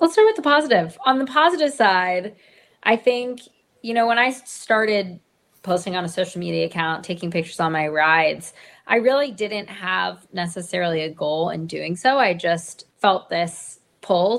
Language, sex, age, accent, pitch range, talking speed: English, female, 20-39, American, 165-220 Hz, 175 wpm